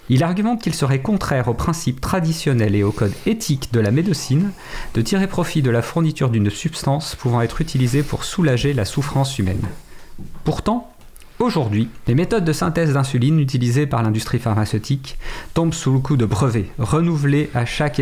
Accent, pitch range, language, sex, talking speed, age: French, 115-160 Hz, French, male, 170 wpm, 40-59